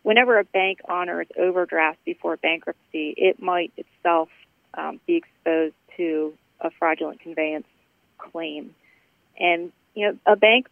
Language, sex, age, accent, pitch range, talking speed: English, female, 30-49, American, 160-180 Hz, 130 wpm